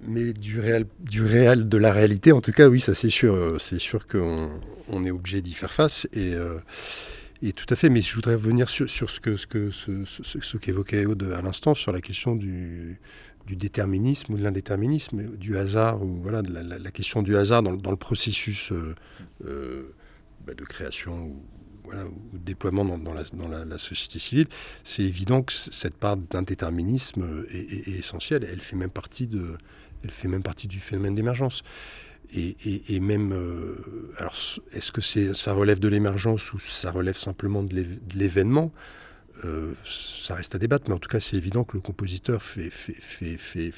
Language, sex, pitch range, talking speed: French, male, 90-110 Hz, 205 wpm